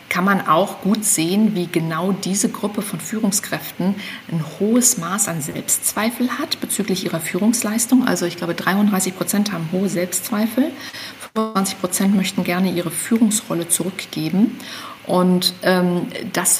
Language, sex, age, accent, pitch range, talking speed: German, female, 50-69, German, 175-225 Hz, 135 wpm